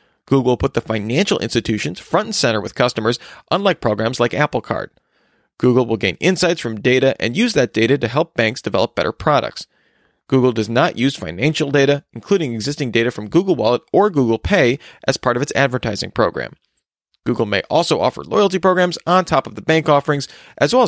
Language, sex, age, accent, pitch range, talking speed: English, male, 40-59, American, 115-165 Hz, 190 wpm